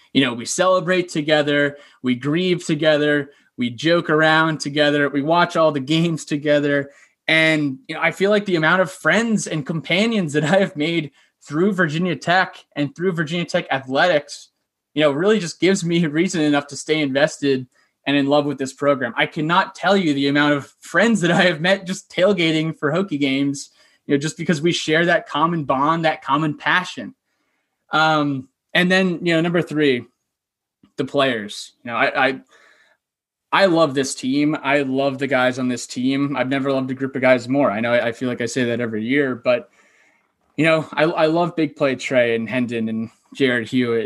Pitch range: 140-170 Hz